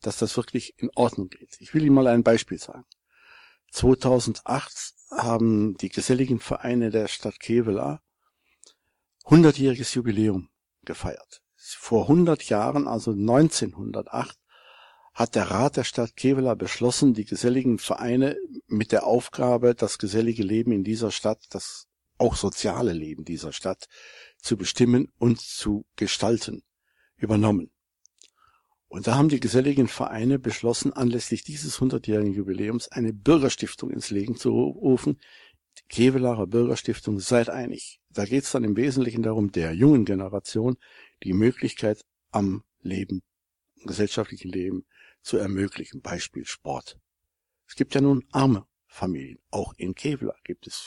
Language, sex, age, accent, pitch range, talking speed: German, male, 60-79, German, 105-125 Hz, 135 wpm